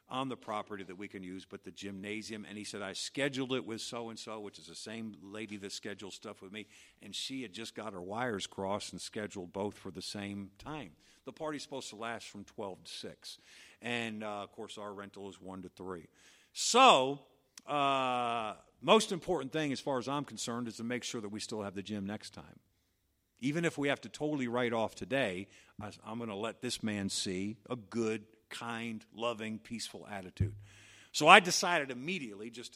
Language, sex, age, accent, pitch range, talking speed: English, male, 50-69, American, 100-130 Hz, 210 wpm